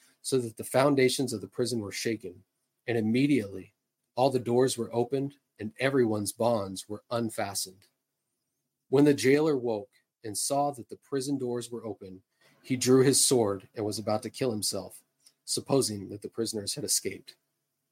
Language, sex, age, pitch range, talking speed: English, male, 30-49, 105-130 Hz, 165 wpm